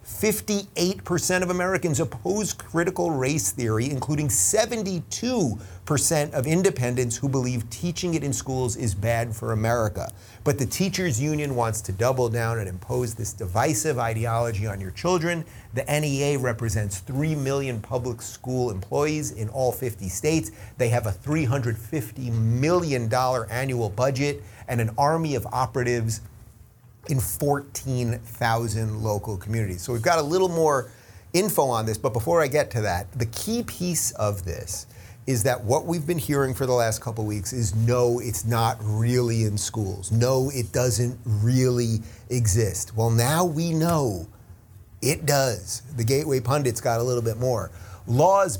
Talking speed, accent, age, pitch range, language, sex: 150 wpm, American, 40-59, 110-145 Hz, English, male